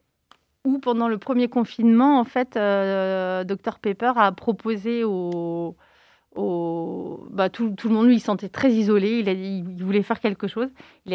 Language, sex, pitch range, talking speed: French, female, 185-240 Hz, 180 wpm